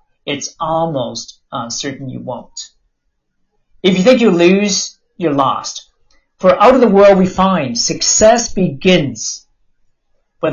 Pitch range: 140-195 Hz